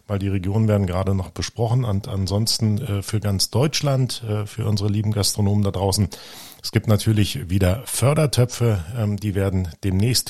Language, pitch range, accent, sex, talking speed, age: German, 95-115 Hz, German, male, 150 wpm, 40-59